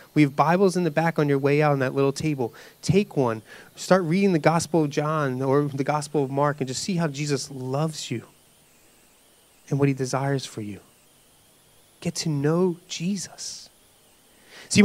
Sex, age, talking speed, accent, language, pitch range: male, 30-49, 180 wpm, American, English, 170-245 Hz